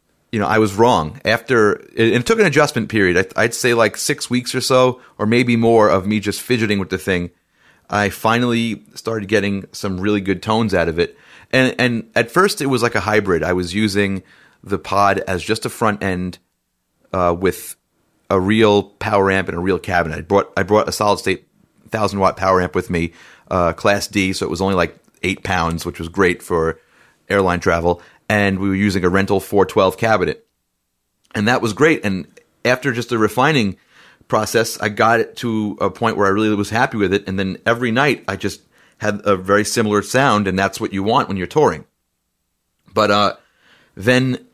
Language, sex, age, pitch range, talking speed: English, male, 30-49, 95-115 Hz, 205 wpm